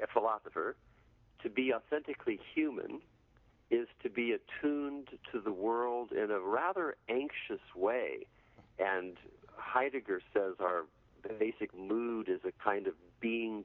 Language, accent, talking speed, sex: English, American, 130 wpm, male